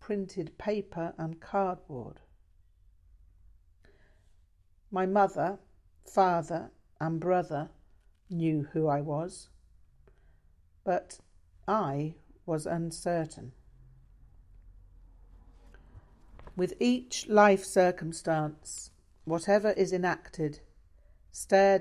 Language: English